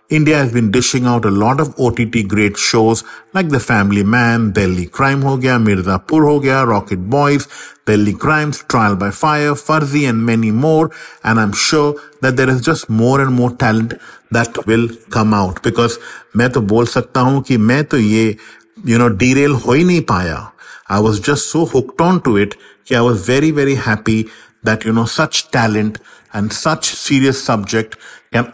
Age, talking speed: 50-69, 155 wpm